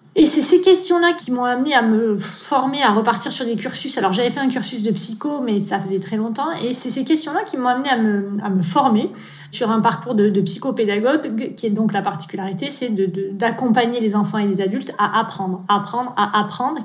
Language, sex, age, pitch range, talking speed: French, female, 20-39, 215-275 Hz, 230 wpm